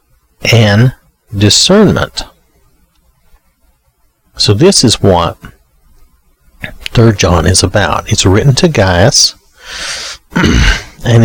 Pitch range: 80-115 Hz